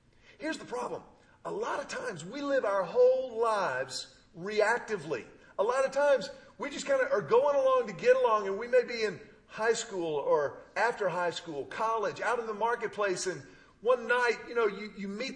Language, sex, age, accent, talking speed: English, male, 40-59, American, 200 wpm